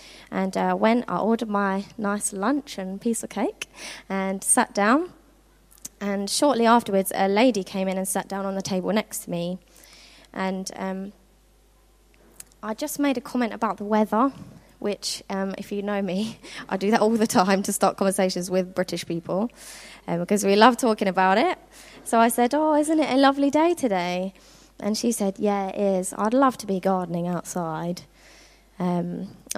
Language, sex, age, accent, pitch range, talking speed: English, female, 20-39, British, 190-225 Hz, 180 wpm